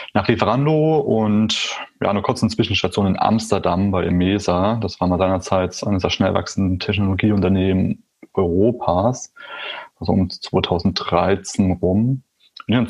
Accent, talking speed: German, 130 wpm